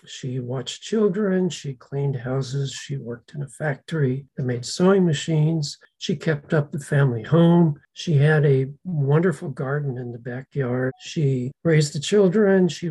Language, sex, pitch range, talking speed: English, male, 140-175 Hz, 160 wpm